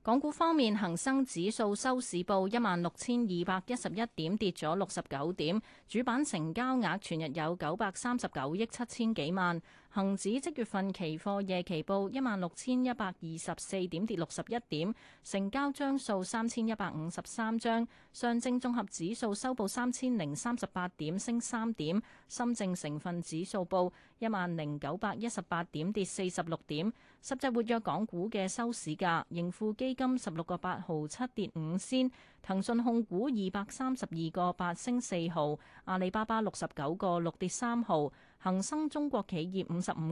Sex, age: female, 30-49